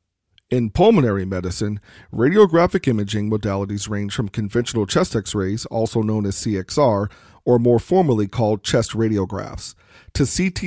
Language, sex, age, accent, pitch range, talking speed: English, male, 40-59, American, 105-125 Hz, 130 wpm